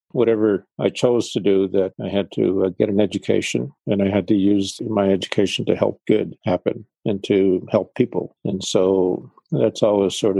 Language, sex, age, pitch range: English, male, 50-69, 95-105 Hz